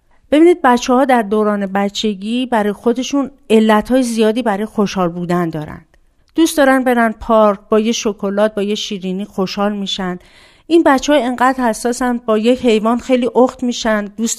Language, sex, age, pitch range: Persian, female, 50-69, 195-260 Hz